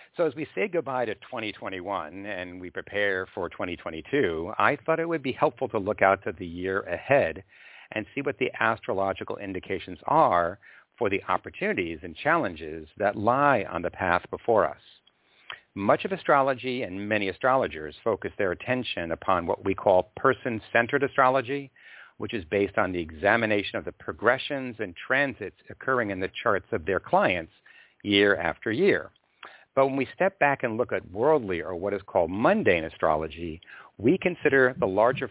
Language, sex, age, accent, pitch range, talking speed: English, male, 50-69, American, 95-130 Hz, 170 wpm